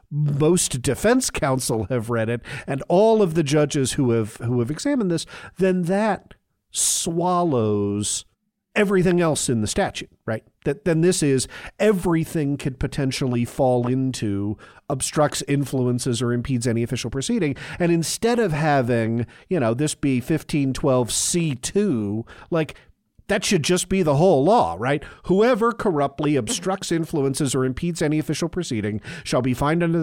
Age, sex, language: 50-69, male, English